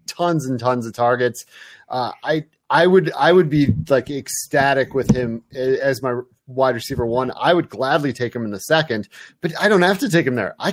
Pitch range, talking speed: 120-155 Hz, 215 wpm